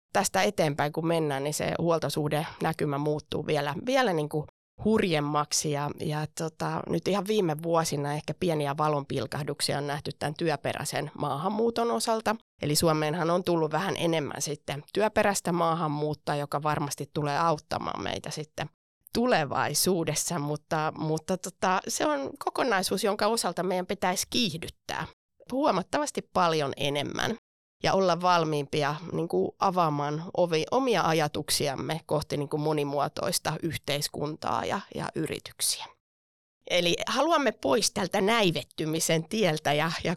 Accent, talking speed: native, 120 wpm